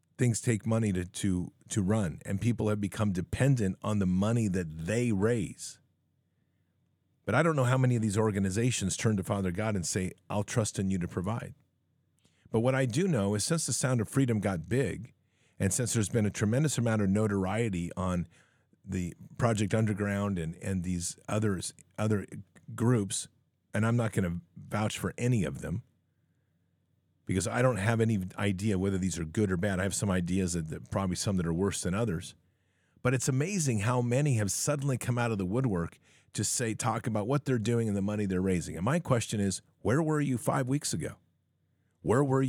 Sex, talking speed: male, 200 wpm